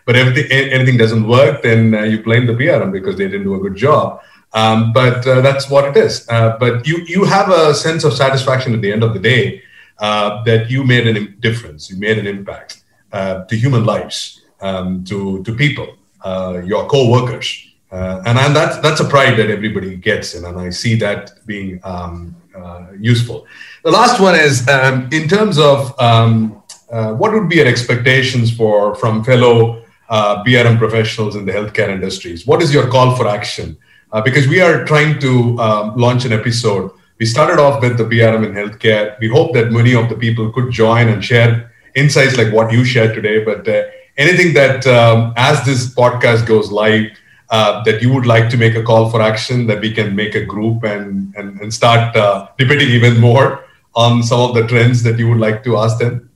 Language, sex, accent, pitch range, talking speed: English, male, Indian, 110-130 Hz, 205 wpm